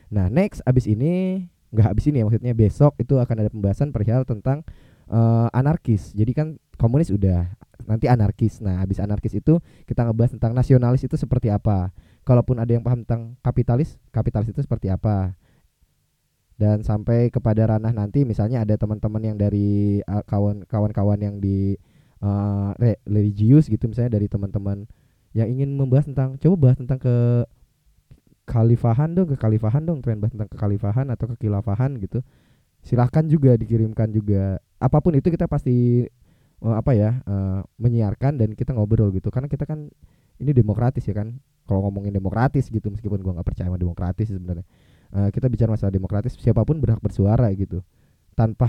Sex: male